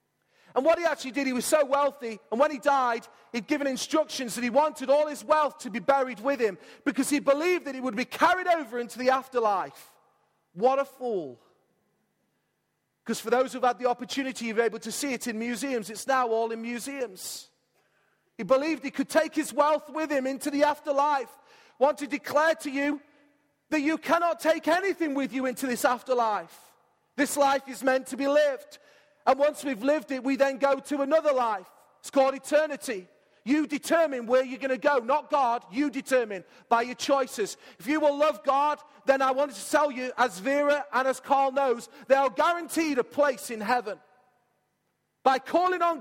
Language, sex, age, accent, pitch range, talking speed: English, male, 40-59, British, 250-295 Hz, 195 wpm